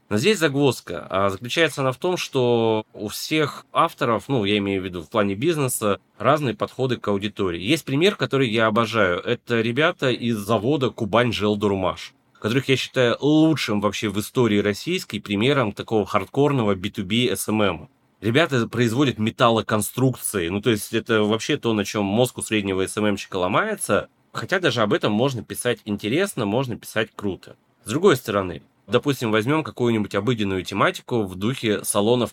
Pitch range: 105-130 Hz